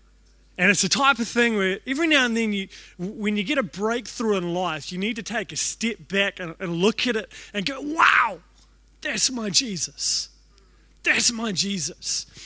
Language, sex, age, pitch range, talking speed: English, male, 30-49, 165-215 Hz, 195 wpm